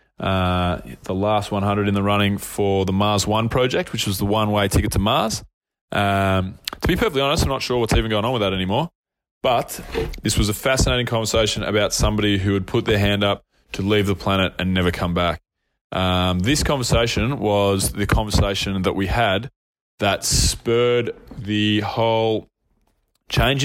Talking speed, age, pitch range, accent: 180 wpm, 20-39, 95-110 Hz, Australian